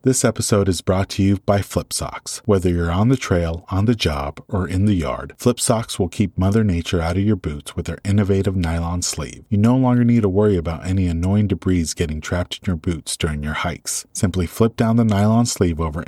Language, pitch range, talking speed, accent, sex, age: English, 85-110 Hz, 230 wpm, American, male, 30-49